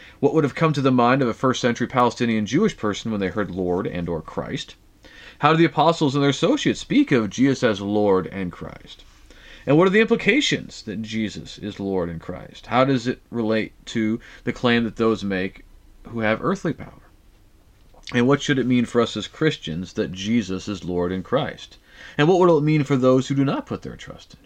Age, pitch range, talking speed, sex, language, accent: 40-59, 105-140 Hz, 220 wpm, male, English, American